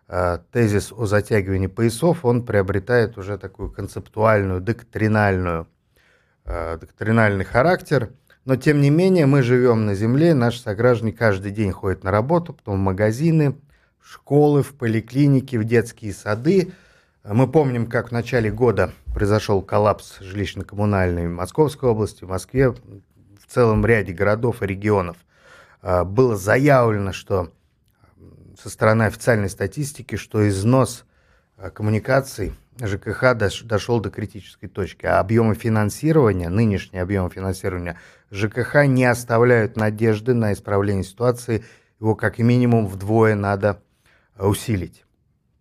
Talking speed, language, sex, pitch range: 120 wpm, Russian, male, 100-120 Hz